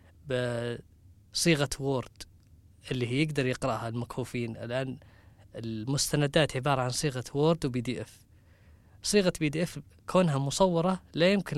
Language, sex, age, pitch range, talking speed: Arabic, female, 20-39, 120-175 Hz, 120 wpm